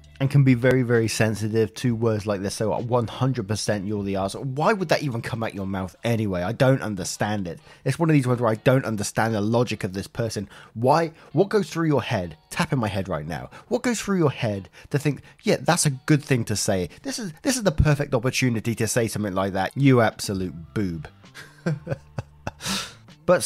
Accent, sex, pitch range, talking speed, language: British, male, 105-145 Hz, 215 wpm, English